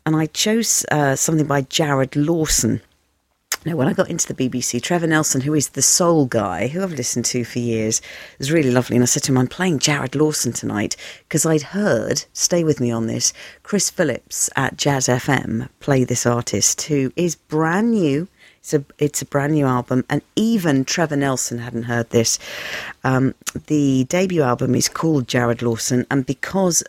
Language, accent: English, British